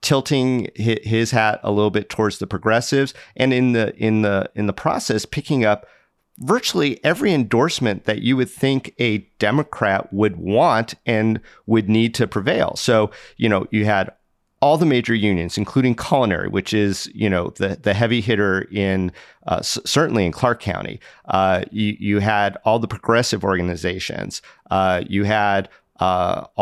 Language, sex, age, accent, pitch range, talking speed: English, male, 40-59, American, 100-115 Hz, 165 wpm